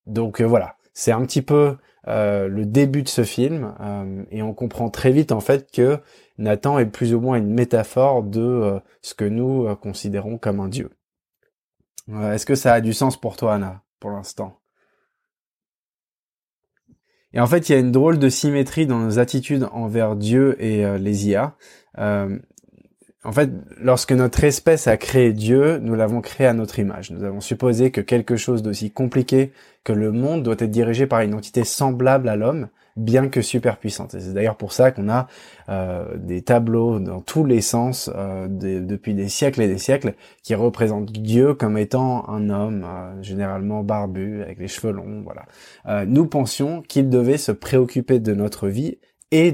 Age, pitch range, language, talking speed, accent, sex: 20-39, 105-130 Hz, French, 190 wpm, French, male